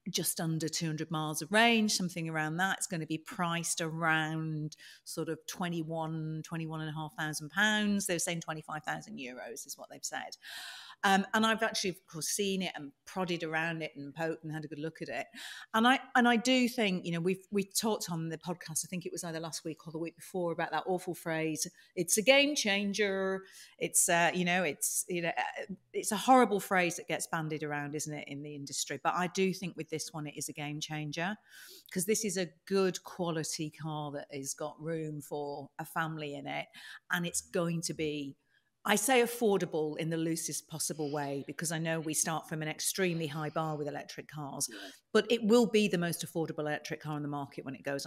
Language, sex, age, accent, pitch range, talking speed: English, female, 40-59, British, 155-195 Hz, 220 wpm